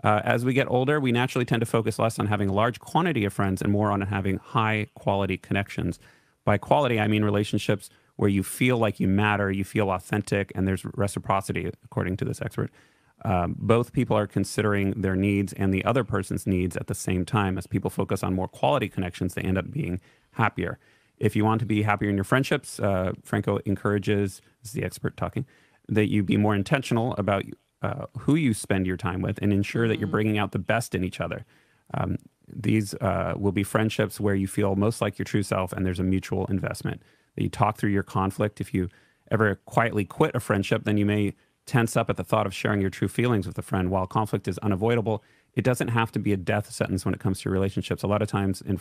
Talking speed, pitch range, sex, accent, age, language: 225 wpm, 95-115 Hz, male, American, 30-49, English